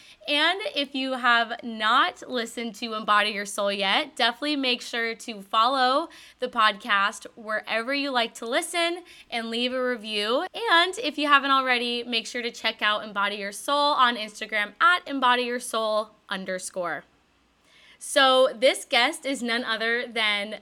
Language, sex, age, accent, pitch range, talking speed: English, female, 10-29, American, 210-270 Hz, 150 wpm